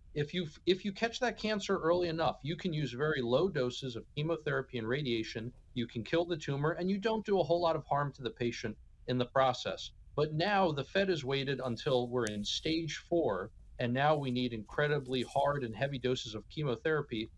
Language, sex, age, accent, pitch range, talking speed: English, male, 40-59, American, 125-160 Hz, 210 wpm